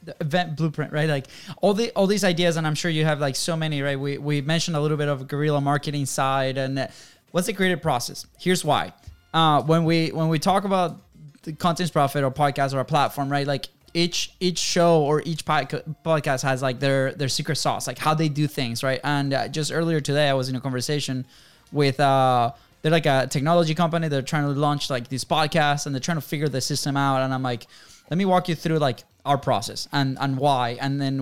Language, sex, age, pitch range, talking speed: English, male, 10-29, 140-165 Hz, 235 wpm